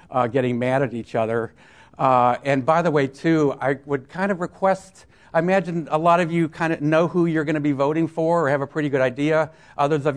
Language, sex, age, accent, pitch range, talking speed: English, male, 60-79, American, 130-165 Hz, 240 wpm